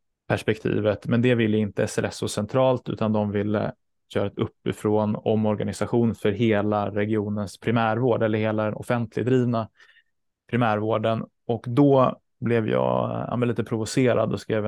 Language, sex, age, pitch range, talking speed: Swedish, male, 20-39, 105-120 Hz, 130 wpm